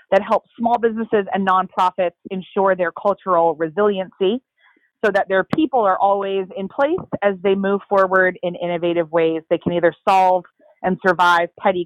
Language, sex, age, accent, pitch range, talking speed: English, female, 30-49, American, 175-205 Hz, 160 wpm